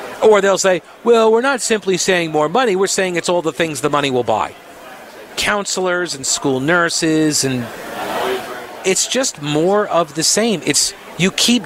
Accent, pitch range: American, 150-205 Hz